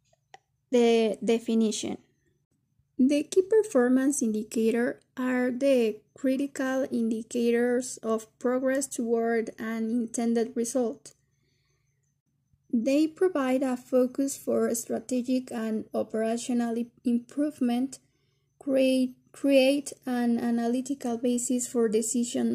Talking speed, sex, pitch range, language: 85 wpm, female, 225-260 Hz, English